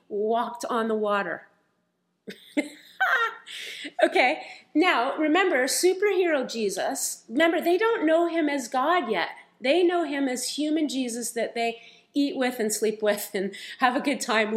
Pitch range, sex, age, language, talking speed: 220-285 Hz, female, 30-49, English, 145 wpm